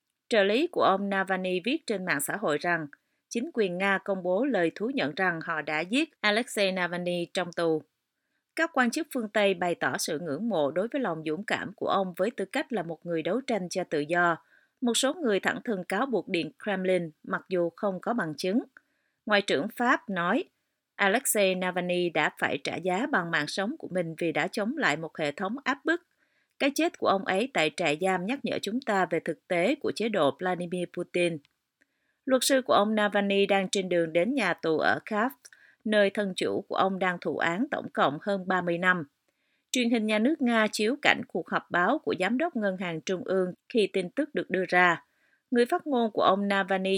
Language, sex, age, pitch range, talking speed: Vietnamese, female, 30-49, 175-240 Hz, 215 wpm